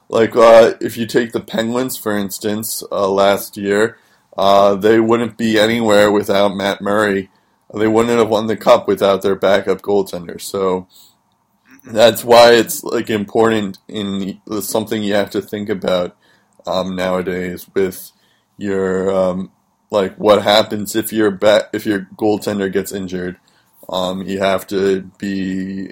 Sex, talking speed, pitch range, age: male, 155 wpm, 95-115 Hz, 20-39